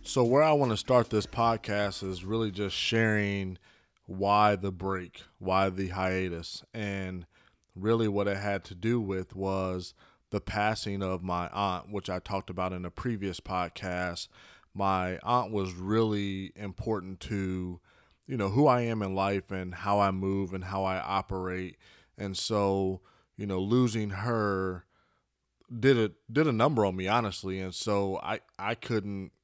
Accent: American